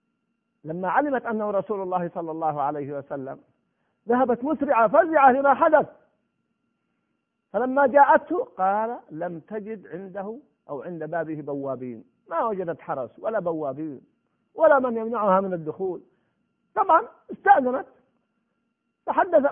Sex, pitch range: male, 155-250 Hz